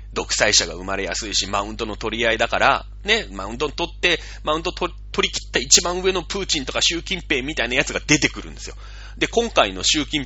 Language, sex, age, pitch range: Japanese, male, 30-49, 150-245 Hz